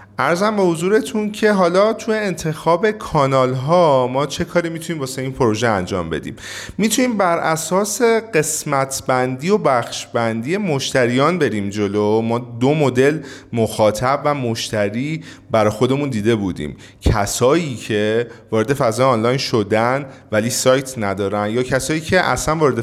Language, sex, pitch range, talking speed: Persian, male, 110-165 Hz, 140 wpm